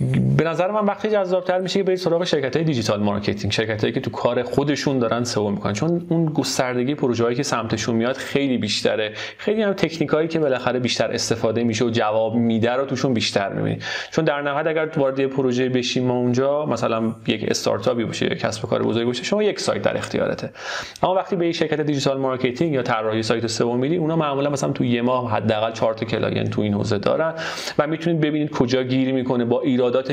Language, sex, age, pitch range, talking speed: Persian, male, 30-49, 115-160 Hz, 145 wpm